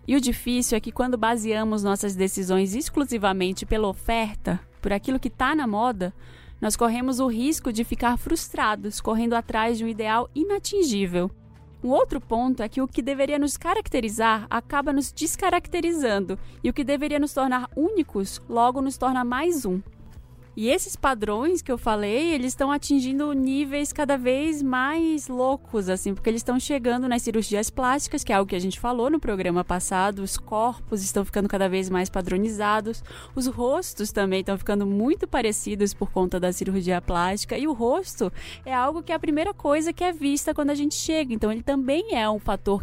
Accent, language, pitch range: Brazilian, English, 205-280 Hz